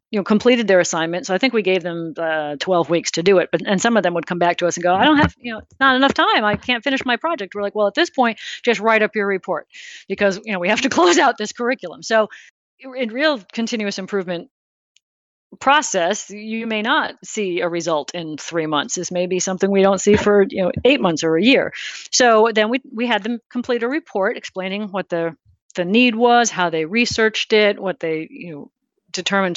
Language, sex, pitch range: English, female, 180-240 Hz